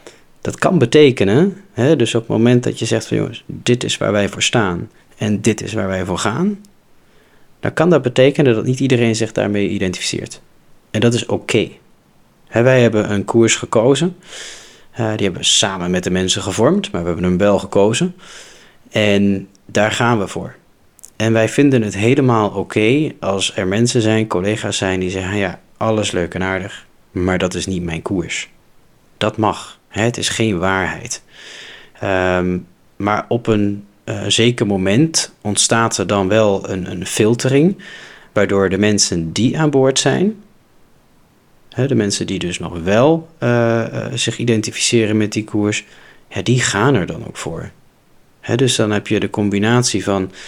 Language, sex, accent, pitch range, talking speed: Dutch, male, Dutch, 100-120 Hz, 170 wpm